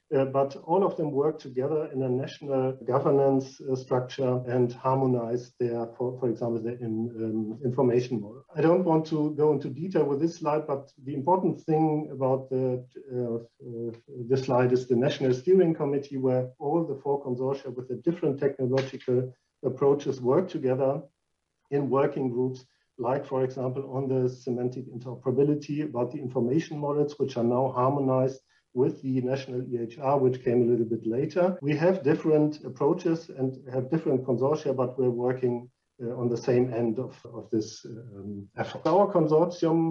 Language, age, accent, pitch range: English, 50-69, German, 125-145 Hz